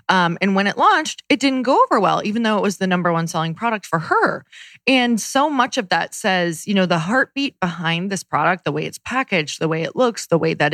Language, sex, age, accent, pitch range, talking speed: English, female, 20-39, American, 175-220 Hz, 250 wpm